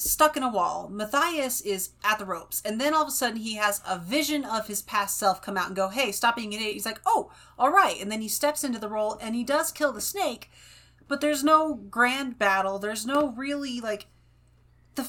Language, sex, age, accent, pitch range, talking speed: English, female, 30-49, American, 185-260 Hz, 235 wpm